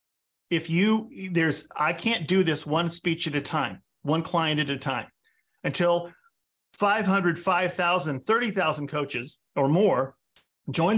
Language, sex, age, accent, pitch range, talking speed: English, male, 40-59, American, 160-205 Hz, 135 wpm